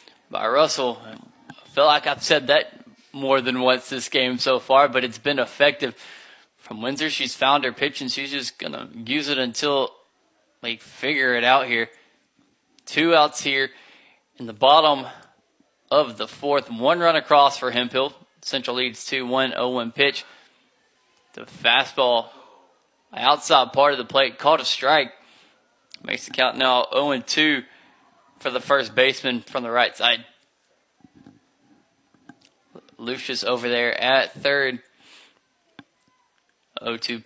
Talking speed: 140 wpm